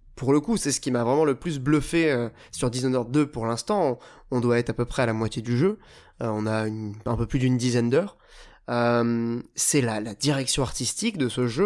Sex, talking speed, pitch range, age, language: male, 240 wpm, 130-185 Hz, 20-39, French